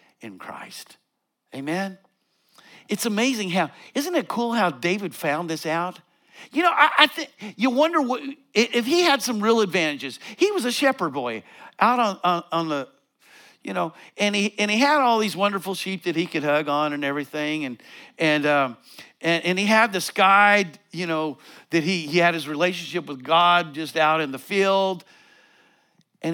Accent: American